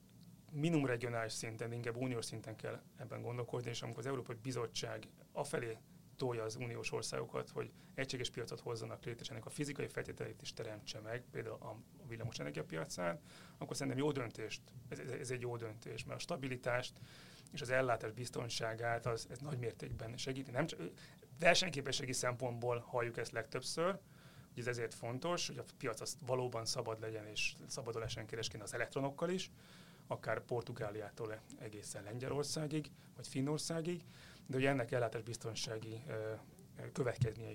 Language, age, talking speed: Hungarian, 30-49, 145 wpm